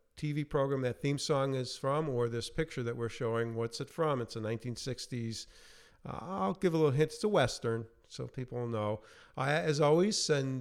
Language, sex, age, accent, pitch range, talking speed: English, male, 50-69, American, 115-140 Hz, 200 wpm